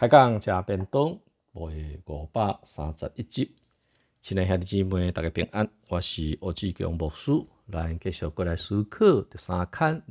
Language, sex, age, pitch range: Chinese, male, 50-69, 80-110 Hz